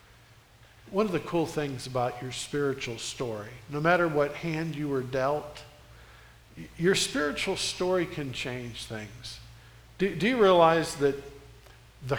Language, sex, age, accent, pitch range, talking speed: English, male, 50-69, American, 130-185 Hz, 140 wpm